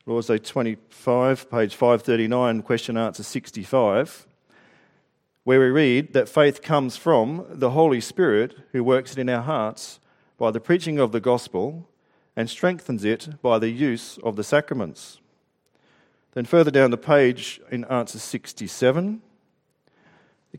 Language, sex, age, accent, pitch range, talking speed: English, male, 40-59, Australian, 110-145 Hz, 140 wpm